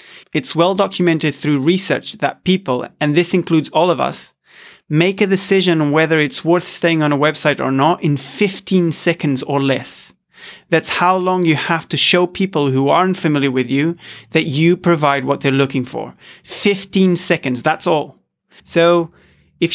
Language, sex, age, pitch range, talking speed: English, male, 30-49, 145-175 Hz, 170 wpm